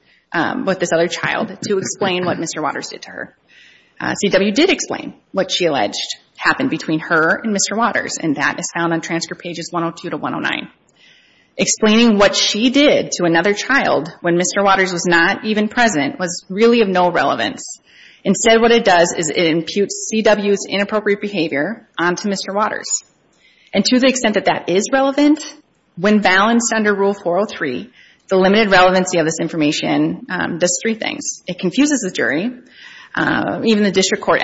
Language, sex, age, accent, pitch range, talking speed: English, female, 30-49, American, 175-225 Hz, 175 wpm